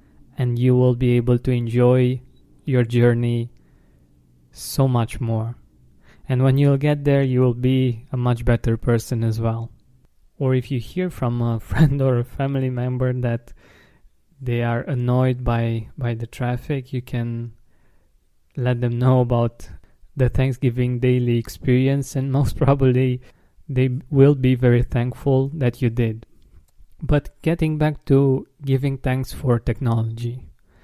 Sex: male